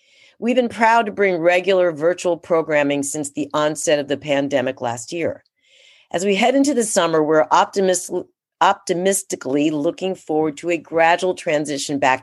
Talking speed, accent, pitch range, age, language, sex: 155 wpm, American, 155-190 Hz, 40-59, English, female